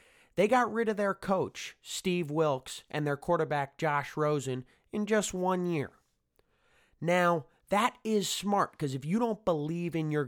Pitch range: 125-165 Hz